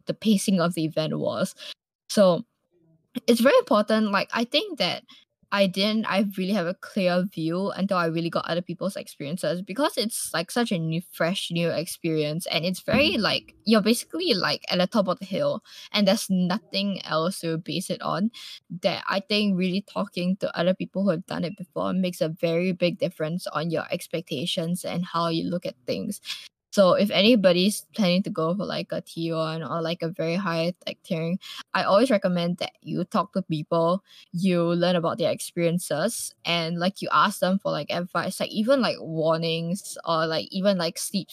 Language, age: English, 10-29